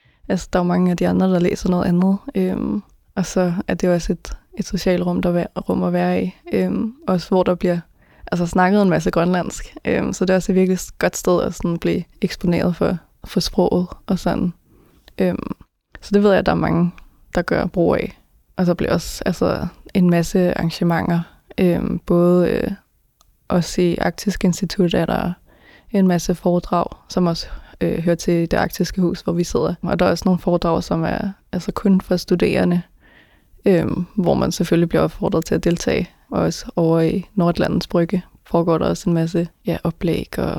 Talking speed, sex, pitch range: 195 wpm, female, 170-190 Hz